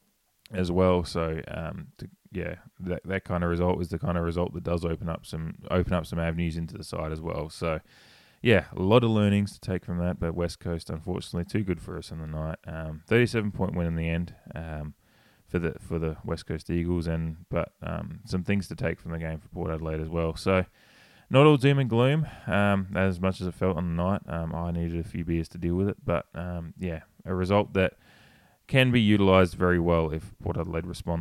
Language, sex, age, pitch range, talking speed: English, male, 20-39, 80-95 Hz, 235 wpm